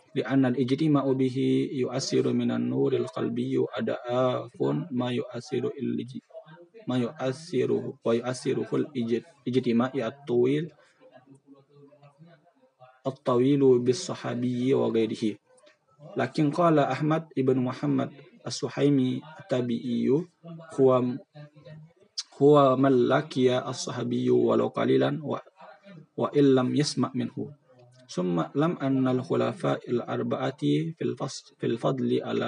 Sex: male